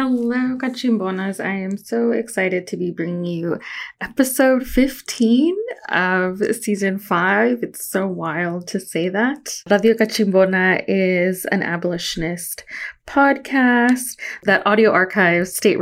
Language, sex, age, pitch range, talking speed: English, female, 20-39, 175-220 Hz, 120 wpm